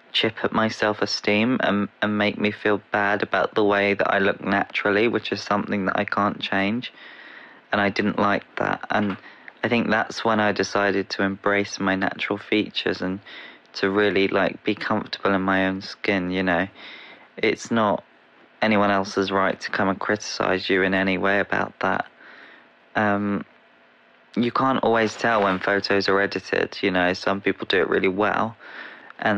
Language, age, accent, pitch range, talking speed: English, 20-39, British, 95-105 Hz, 175 wpm